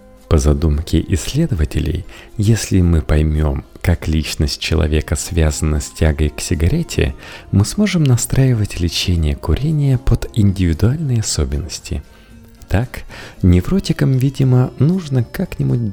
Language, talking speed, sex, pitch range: Russian, 100 wpm, male, 80-115 Hz